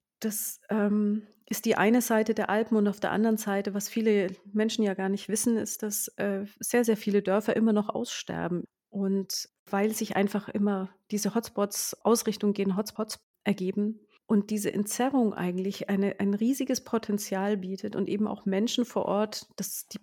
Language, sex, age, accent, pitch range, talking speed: German, female, 30-49, German, 195-220 Hz, 170 wpm